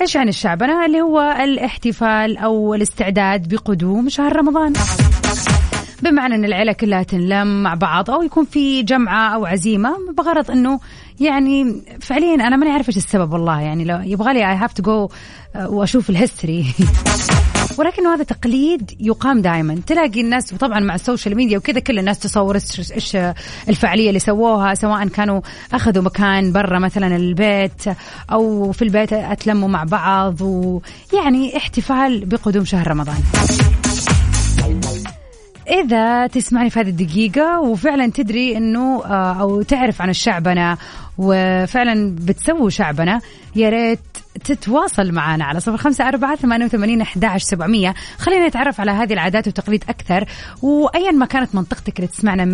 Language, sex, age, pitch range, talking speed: Arabic, female, 30-49, 195-255 Hz, 130 wpm